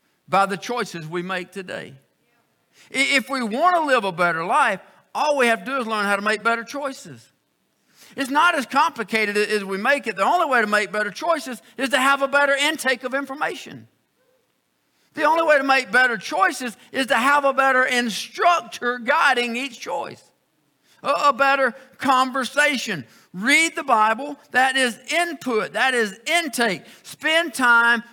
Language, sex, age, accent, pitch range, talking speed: English, male, 50-69, American, 200-275 Hz, 170 wpm